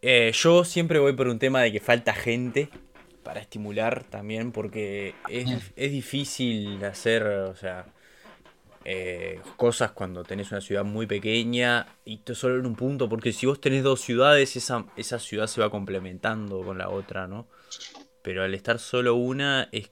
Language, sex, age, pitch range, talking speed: Spanish, male, 20-39, 105-130 Hz, 170 wpm